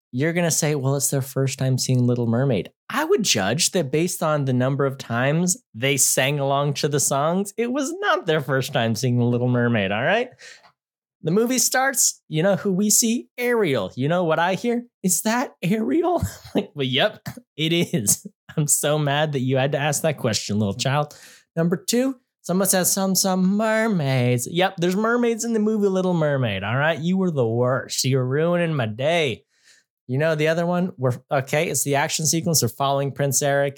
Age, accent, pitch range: 20-39, American, 130-200 Hz